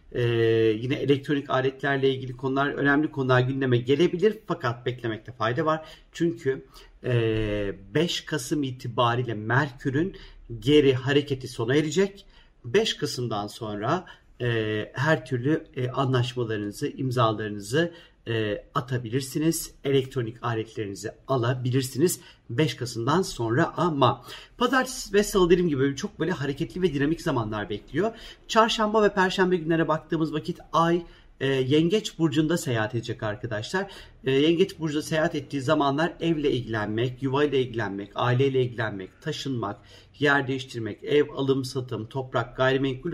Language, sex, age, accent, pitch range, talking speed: Turkish, male, 50-69, native, 120-160 Hz, 120 wpm